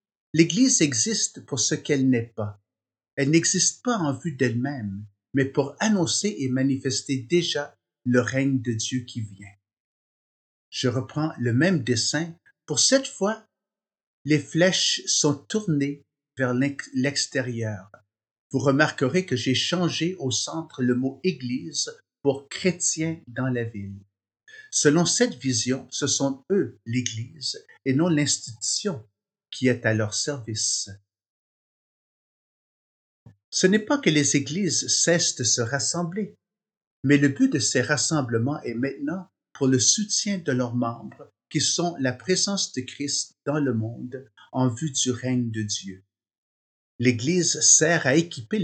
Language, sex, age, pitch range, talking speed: French, male, 50-69, 125-170 Hz, 140 wpm